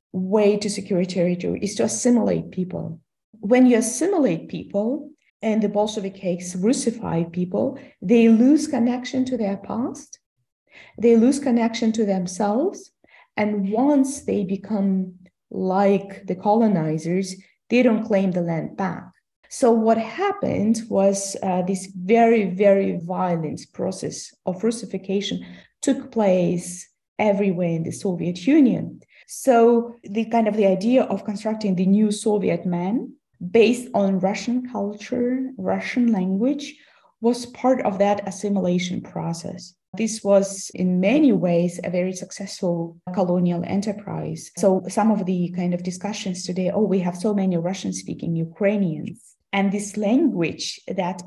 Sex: female